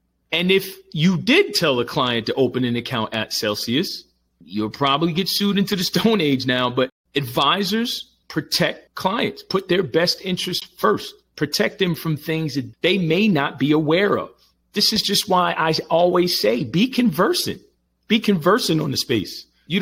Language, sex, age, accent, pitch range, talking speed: English, male, 40-59, American, 125-180 Hz, 175 wpm